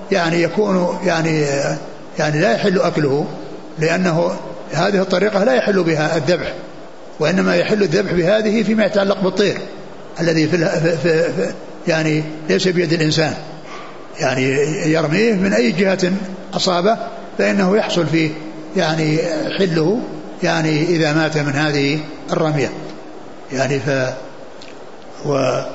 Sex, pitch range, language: male, 160-195 Hz, Arabic